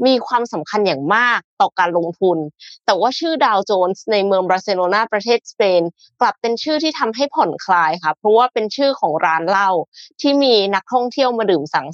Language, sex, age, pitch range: Thai, female, 20-39, 180-245 Hz